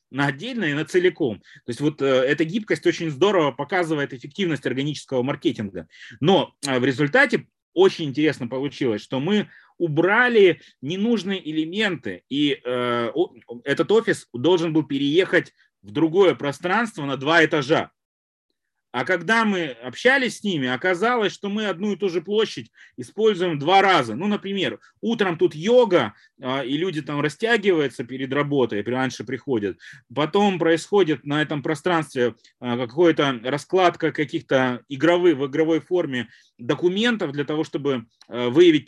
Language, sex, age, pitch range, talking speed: Russian, male, 30-49, 135-185 Hz, 140 wpm